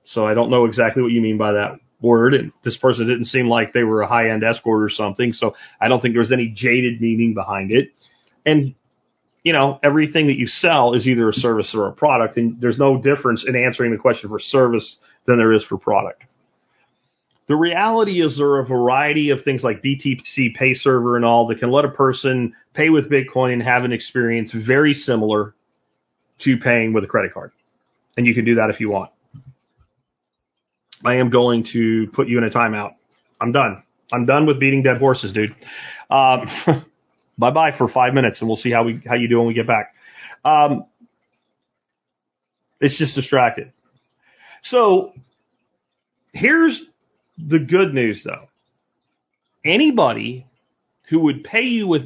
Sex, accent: male, American